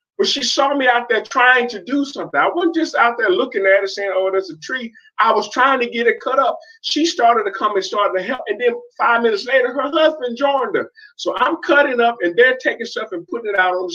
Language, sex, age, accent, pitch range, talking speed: English, male, 30-49, American, 215-355 Hz, 265 wpm